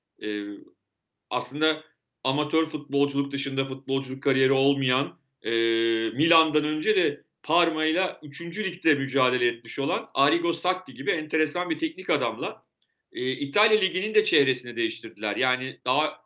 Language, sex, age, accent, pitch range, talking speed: Turkish, male, 40-59, native, 130-165 Hz, 120 wpm